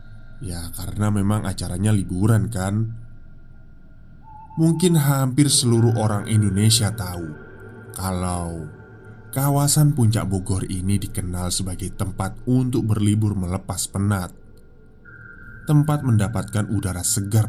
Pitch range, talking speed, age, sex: 100-120 Hz, 95 wpm, 20-39, male